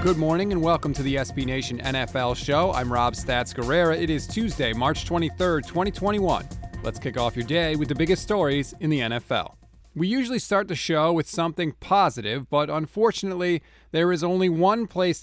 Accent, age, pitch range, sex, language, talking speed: American, 30-49, 130-175 Hz, male, English, 180 wpm